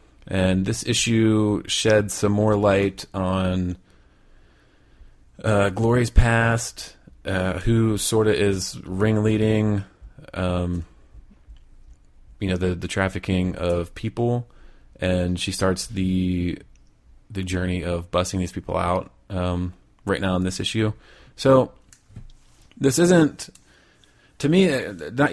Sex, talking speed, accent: male, 115 wpm, American